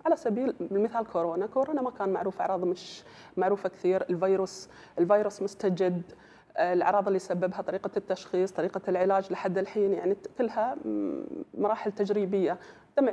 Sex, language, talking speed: female, Arabic, 135 wpm